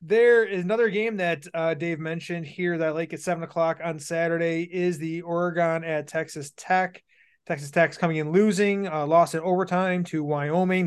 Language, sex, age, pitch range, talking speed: English, male, 30-49, 160-210 Hz, 180 wpm